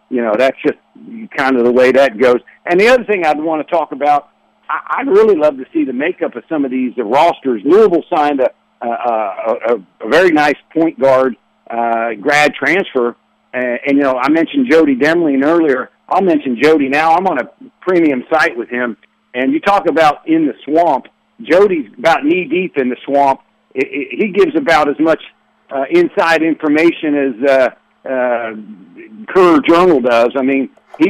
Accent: American